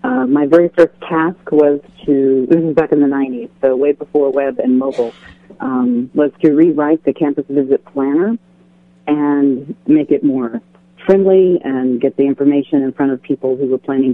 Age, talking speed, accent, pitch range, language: 40-59, 185 wpm, American, 135-155 Hz, English